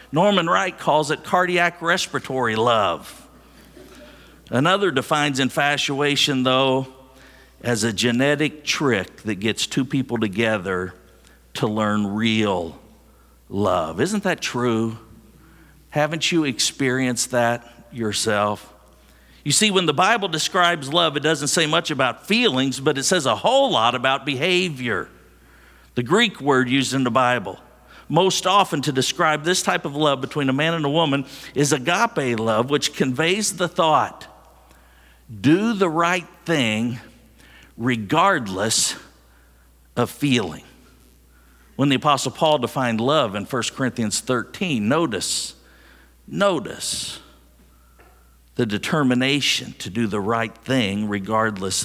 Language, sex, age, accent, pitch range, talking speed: English, male, 50-69, American, 105-150 Hz, 125 wpm